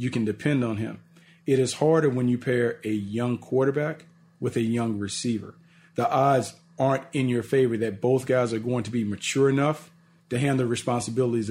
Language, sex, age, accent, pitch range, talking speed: English, male, 40-59, American, 120-155 Hz, 195 wpm